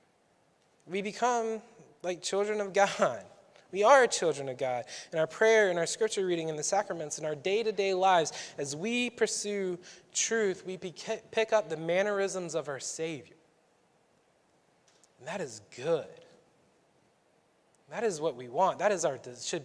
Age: 20-39